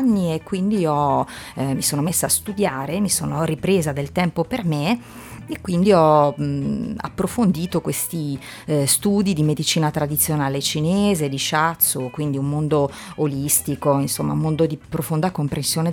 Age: 30-49